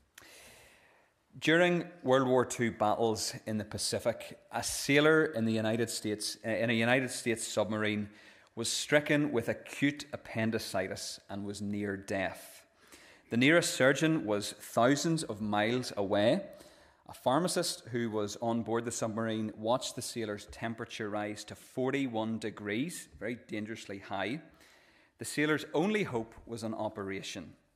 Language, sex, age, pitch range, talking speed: English, male, 30-49, 105-135 Hz, 125 wpm